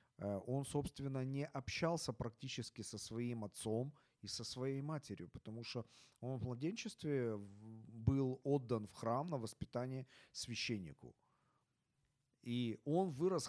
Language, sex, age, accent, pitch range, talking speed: Ukrainian, male, 40-59, native, 120-155 Hz, 120 wpm